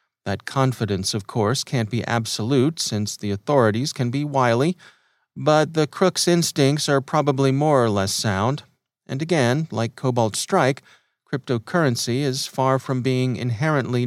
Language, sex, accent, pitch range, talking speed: English, male, American, 110-135 Hz, 145 wpm